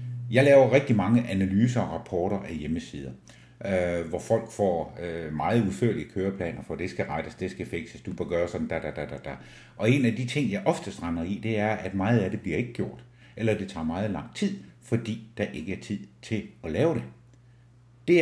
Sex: male